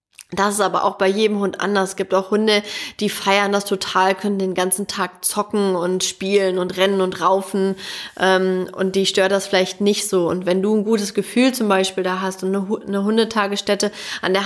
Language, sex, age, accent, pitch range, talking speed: German, female, 20-39, German, 190-210 Hz, 210 wpm